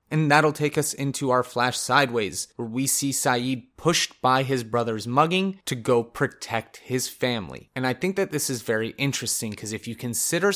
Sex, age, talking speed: male, 30-49, 195 wpm